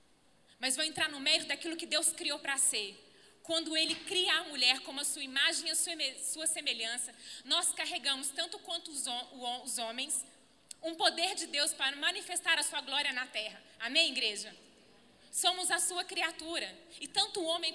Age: 20-39